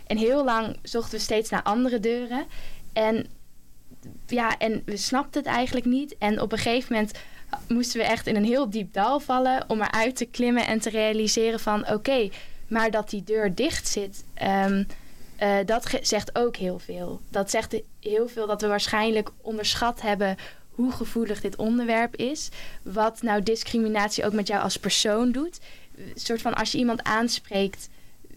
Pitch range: 205-230 Hz